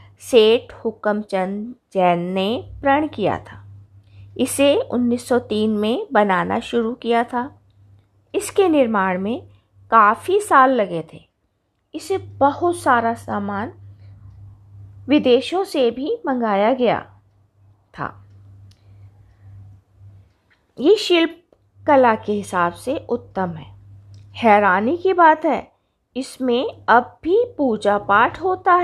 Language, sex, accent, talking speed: Hindi, female, native, 100 wpm